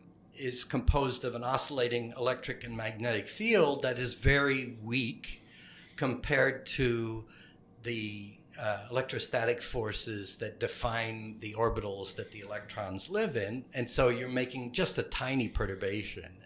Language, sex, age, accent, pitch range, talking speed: English, male, 60-79, American, 105-140 Hz, 130 wpm